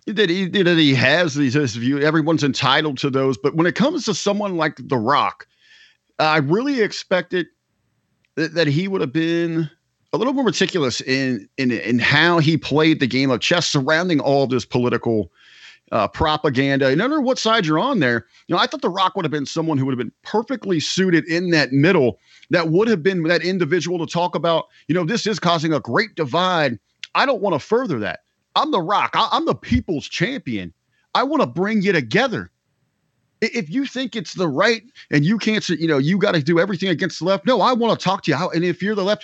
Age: 40-59